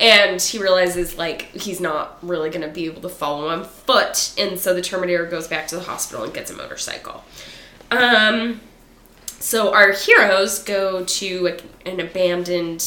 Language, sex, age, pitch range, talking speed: English, female, 10-29, 180-245 Hz, 175 wpm